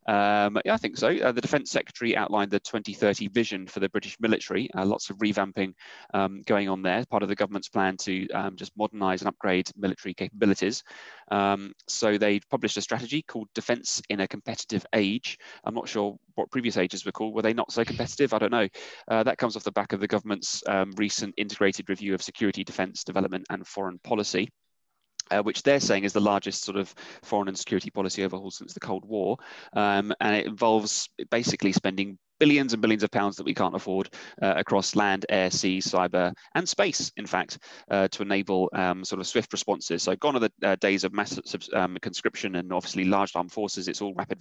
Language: English